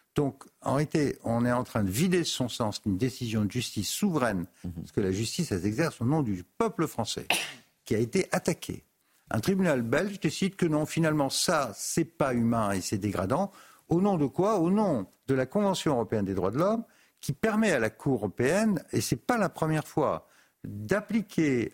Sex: male